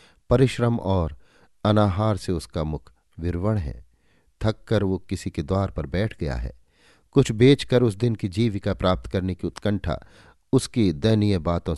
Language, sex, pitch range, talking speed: Hindi, male, 85-115 Hz, 155 wpm